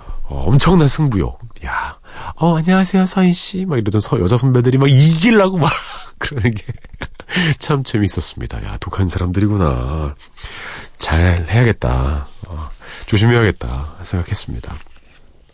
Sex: male